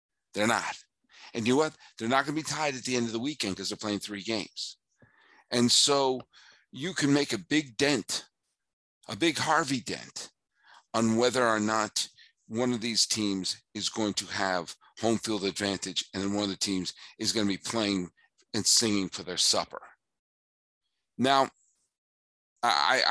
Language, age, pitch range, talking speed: English, 50-69, 95-130 Hz, 175 wpm